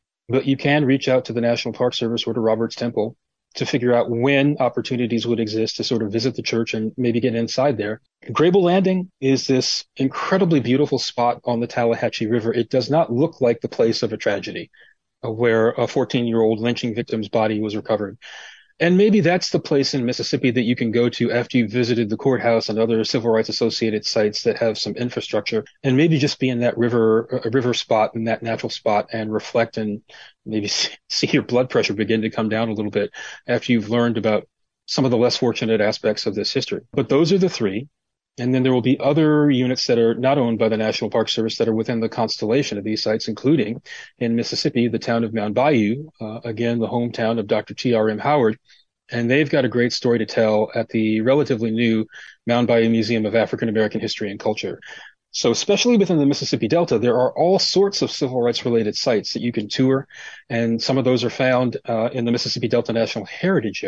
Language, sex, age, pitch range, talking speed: English, male, 30-49, 115-130 Hz, 215 wpm